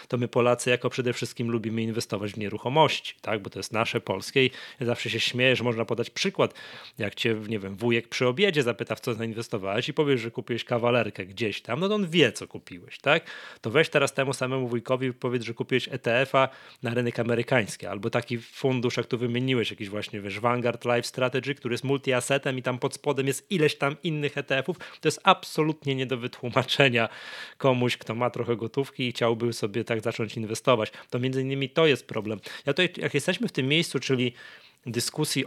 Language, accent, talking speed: Polish, native, 200 wpm